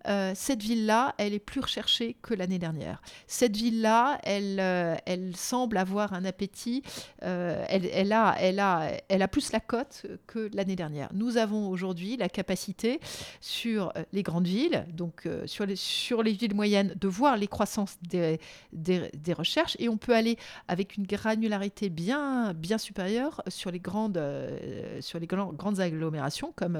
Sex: female